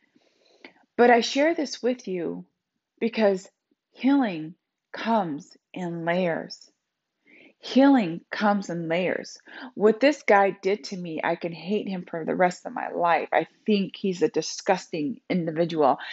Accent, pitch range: American, 165-205 Hz